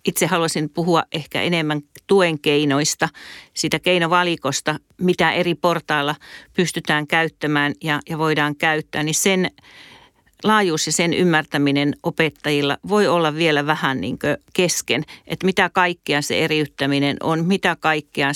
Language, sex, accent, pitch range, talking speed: Finnish, female, native, 150-175 Hz, 125 wpm